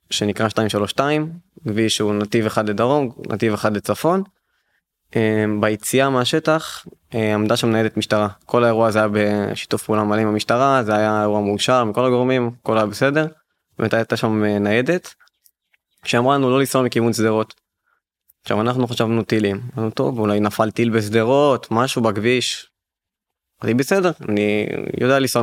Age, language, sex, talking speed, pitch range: 20-39, Hebrew, male, 140 wpm, 105-120 Hz